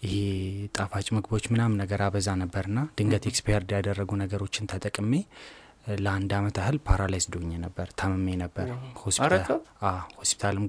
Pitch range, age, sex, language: 100-115 Hz, 20-39, male, Amharic